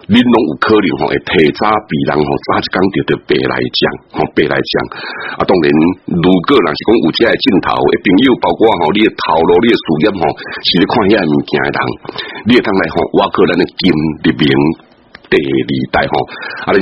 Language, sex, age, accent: Chinese, male, 60-79, Malaysian